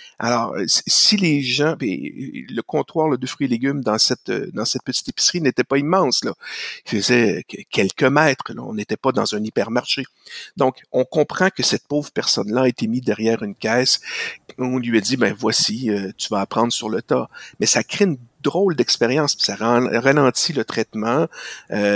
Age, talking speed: 50-69, 185 wpm